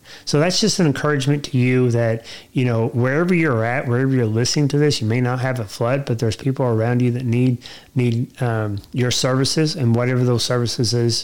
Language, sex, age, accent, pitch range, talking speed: English, male, 30-49, American, 120-140 Hz, 215 wpm